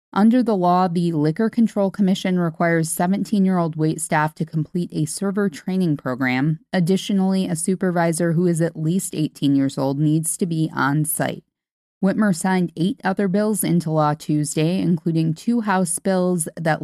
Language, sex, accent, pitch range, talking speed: English, female, American, 155-195 Hz, 160 wpm